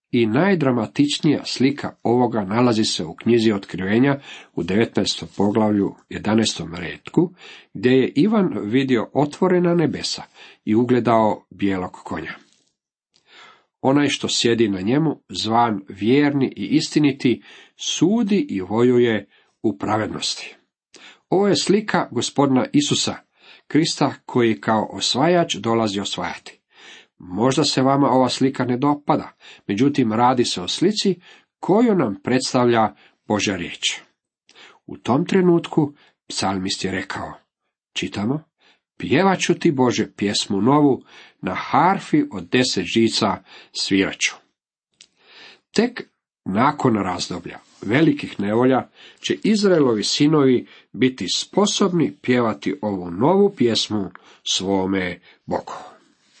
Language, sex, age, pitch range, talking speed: Croatian, male, 50-69, 105-145 Hz, 105 wpm